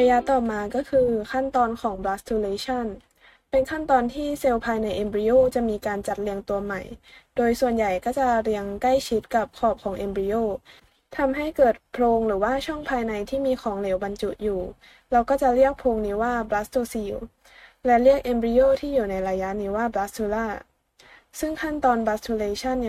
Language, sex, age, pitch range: Thai, female, 20-39, 210-260 Hz